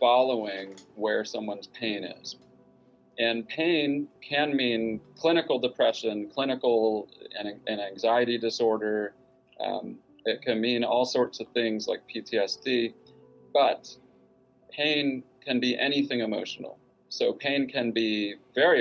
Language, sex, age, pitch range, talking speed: English, male, 30-49, 105-130 Hz, 120 wpm